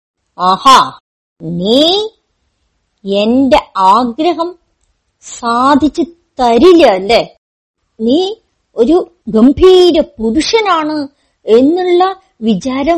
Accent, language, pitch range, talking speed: native, Malayalam, 220-355 Hz, 55 wpm